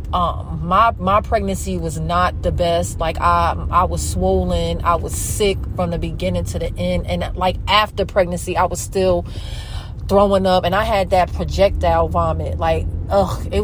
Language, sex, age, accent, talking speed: English, female, 30-49, American, 175 wpm